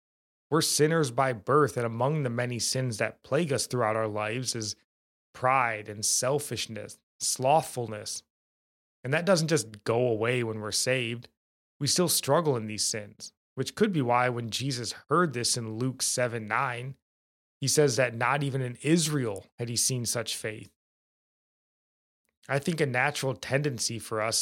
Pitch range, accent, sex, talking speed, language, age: 110-135 Hz, American, male, 160 wpm, English, 20-39